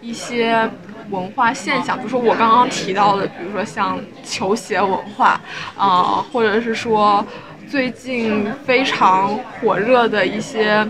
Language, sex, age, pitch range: Chinese, female, 10-29, 210-260 Hz